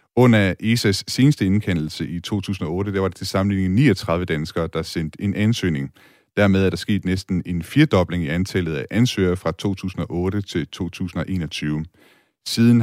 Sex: male